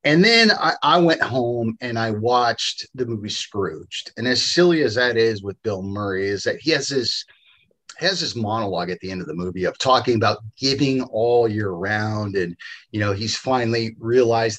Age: 30-49